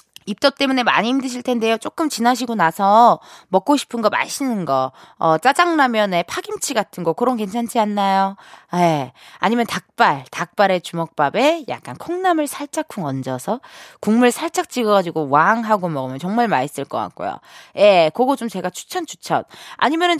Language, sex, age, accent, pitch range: Korean, female, 20-39, native, 185-290 Hz